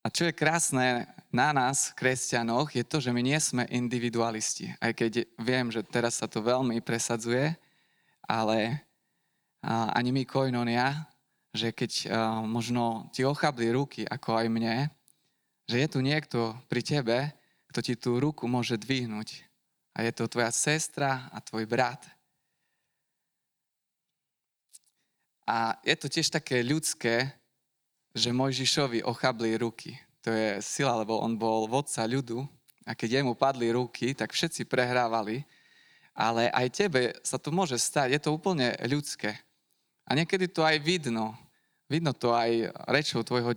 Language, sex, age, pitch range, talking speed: Slovak, male, 20-39, 115-145 Hz, 145 wpm